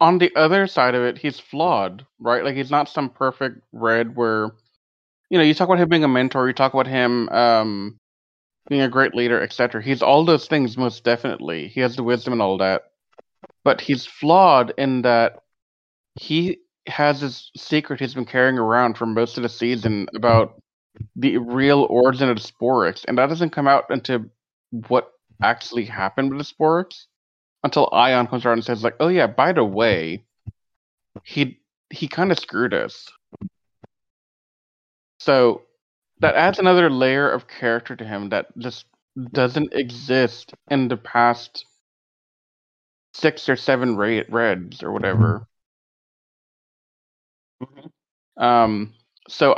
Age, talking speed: 30-49, 155 wpm